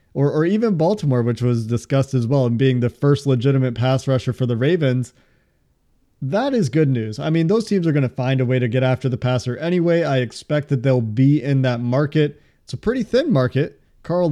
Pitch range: 130-150 Hz